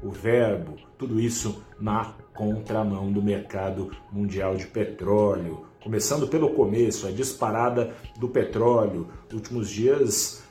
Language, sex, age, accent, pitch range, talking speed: Portuguese, male, 40-59, Brazilian, 105-135 Hz, 120 wpm